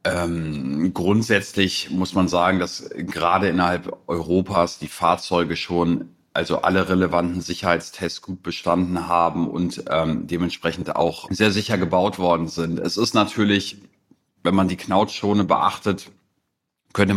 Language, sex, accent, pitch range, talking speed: German, male, German, 90-100 Hz, 130 wpm